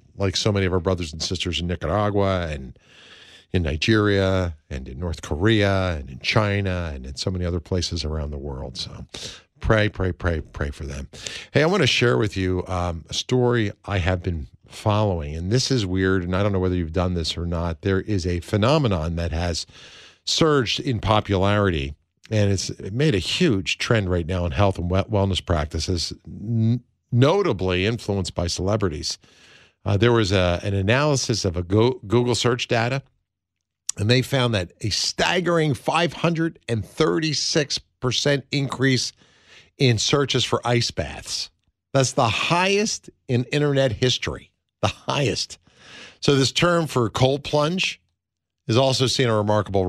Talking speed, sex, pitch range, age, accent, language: 160 wpm, male, 90-125 Hz, 50-69, American, English